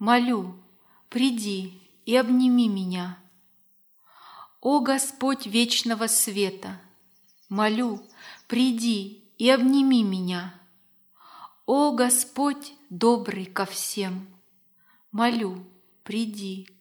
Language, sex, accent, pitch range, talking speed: Russian, female, native, 185-245 Hz, 75 wpm